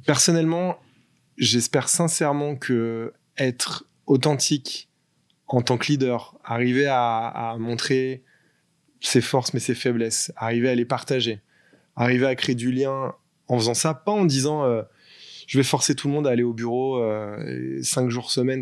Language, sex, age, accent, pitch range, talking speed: French, male, 20-39, French, 120-135 Hz, 160 wpm